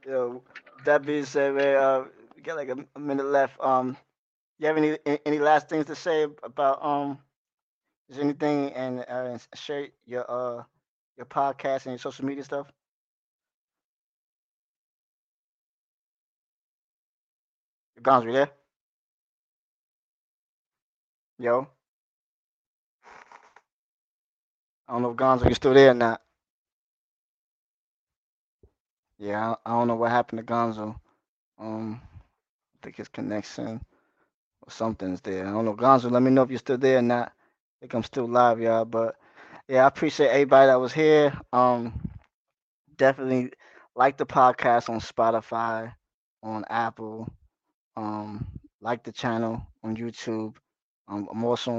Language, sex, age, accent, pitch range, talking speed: English, male, 20-39, American, 115-135 Hz, 130 wpm